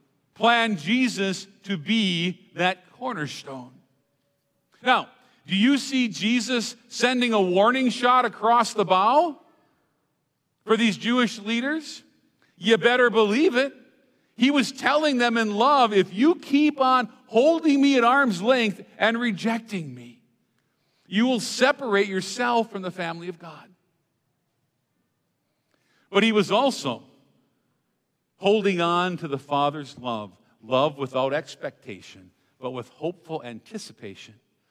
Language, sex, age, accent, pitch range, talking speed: English, male, 50-69, American, 155-235 Hz, 120 wpm